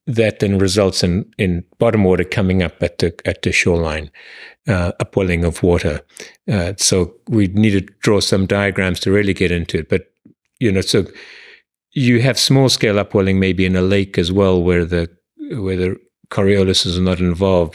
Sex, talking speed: male, 185 wpm